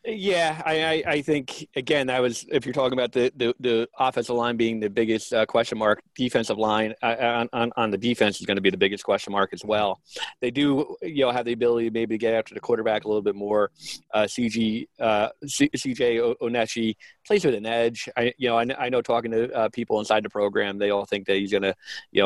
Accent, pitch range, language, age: American, 105-120 Hz, English, 30-49